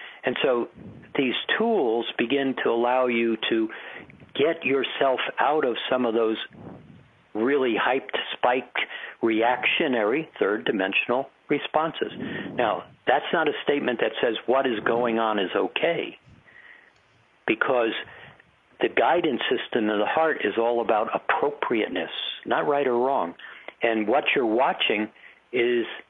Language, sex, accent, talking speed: English, male, American, 130 wpm